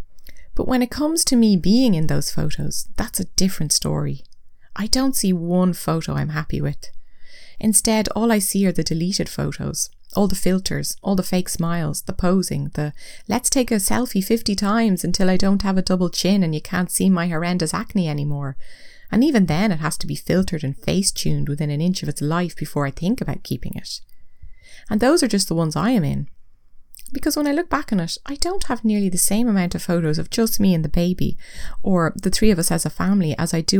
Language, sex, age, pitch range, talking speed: English, female, 30-49, 155-210 Hz, 225 wpm